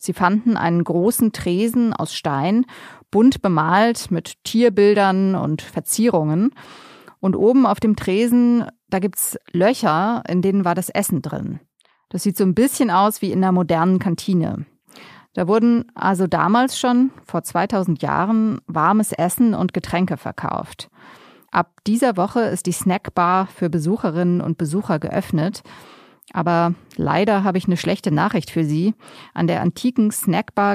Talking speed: 150 wpm